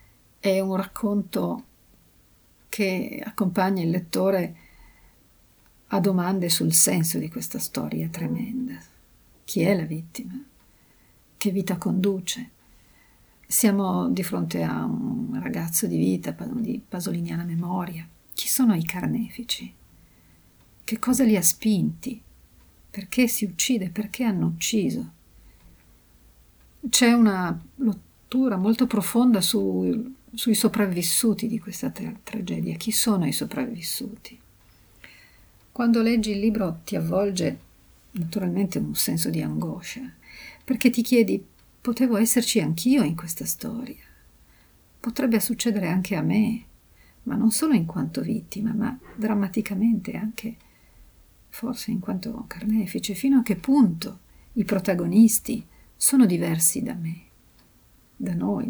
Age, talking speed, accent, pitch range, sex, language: 50-69, 115 wpm, native, 170-230 Hz, female, Italian